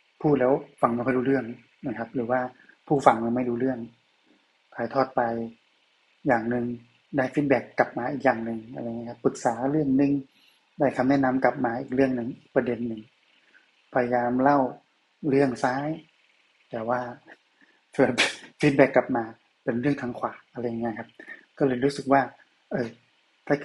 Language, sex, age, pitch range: Thai, male, 20-39, 120-140 Hz